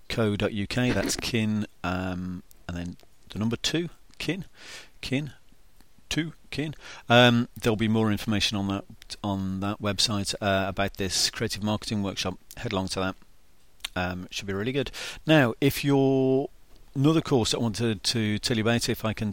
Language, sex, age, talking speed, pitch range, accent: English, male, 40-59, 165 wpm, 100-120 Hz, British